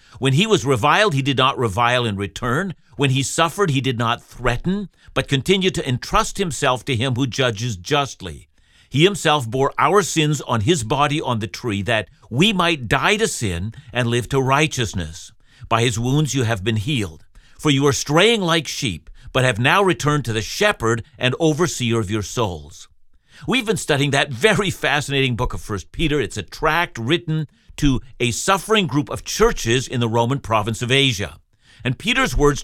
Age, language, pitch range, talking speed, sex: 50-69, English, 115-155 Hz, 190 wpm, male